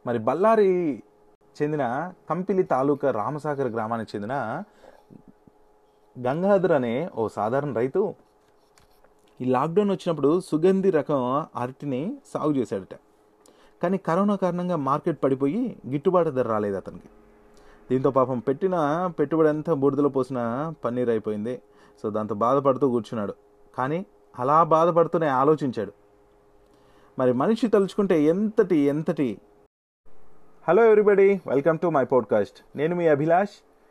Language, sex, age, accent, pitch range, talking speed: Telugu, male, 30-49, native, 115-170 Hz, 105 wpm